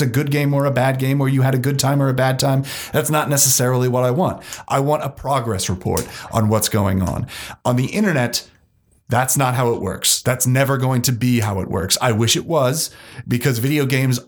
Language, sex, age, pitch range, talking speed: English, male, 30-49, 115-145 Hz, 230 wpm